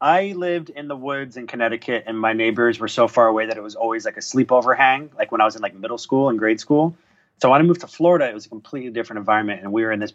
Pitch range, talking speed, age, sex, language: 105-135 Hz, 295 wpm, 30-49, male, English